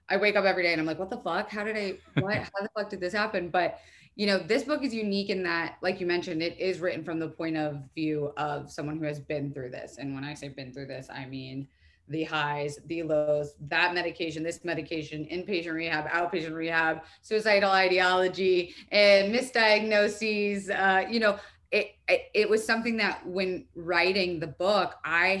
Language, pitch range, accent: English, 150-185 Hz, American